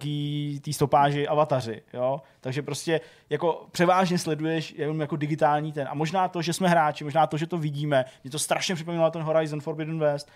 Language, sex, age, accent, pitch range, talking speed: Czech, male, 20-39, native, 140-175 Hz, 190 wpm